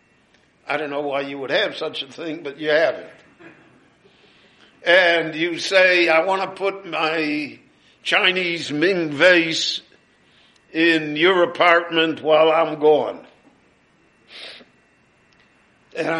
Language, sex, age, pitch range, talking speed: English, male, 60-79, 160-195 Hz, 120 wpm